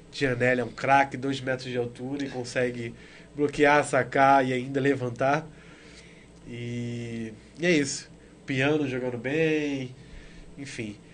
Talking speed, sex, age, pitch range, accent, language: 125 wpm, male, 20-39, 135-160 Hz, Brazilian, Portuguese